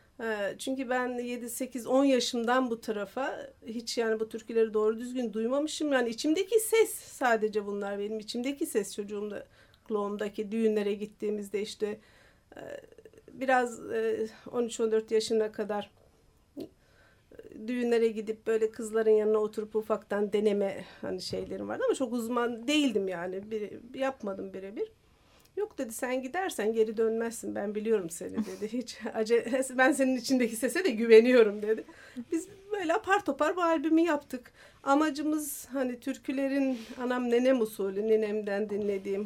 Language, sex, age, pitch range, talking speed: Turkish, female, 50-69, 210-265 Hz, 125 wpm